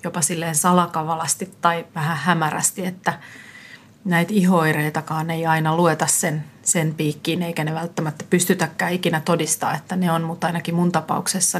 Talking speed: 135 wpm